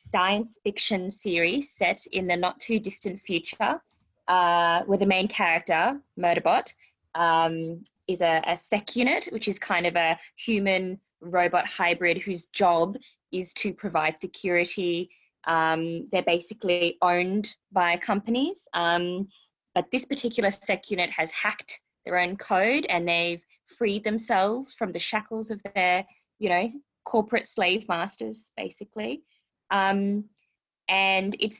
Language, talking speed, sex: English, 135 wpm, female